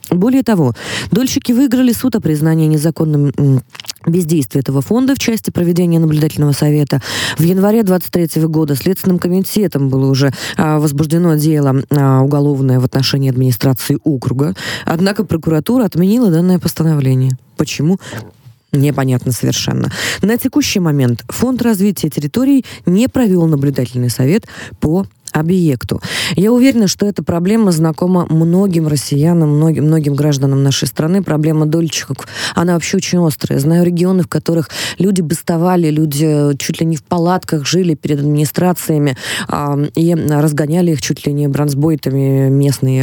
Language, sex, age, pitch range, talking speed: Russian, female, 20-39, 135-175 Hz, 135 wpm